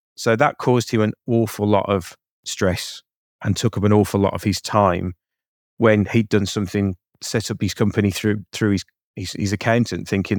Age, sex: 30-49, male